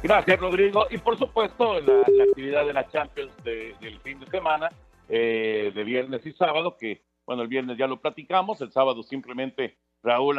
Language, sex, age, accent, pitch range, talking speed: Spanish, male, 50-69, Mexican, 115-165 Hz, 185 wpm